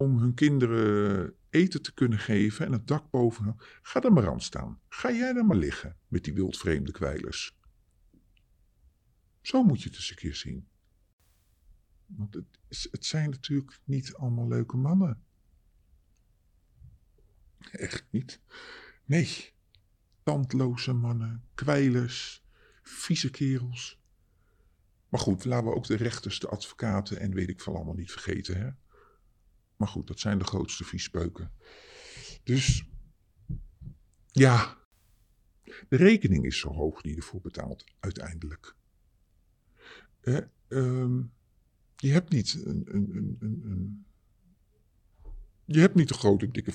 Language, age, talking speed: Dutch, 50-69, 120 wpm